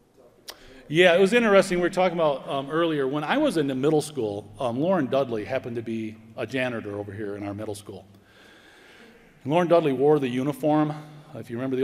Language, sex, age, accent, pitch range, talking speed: English, male, 40-59, American, 110-140 Hz, 210 wpm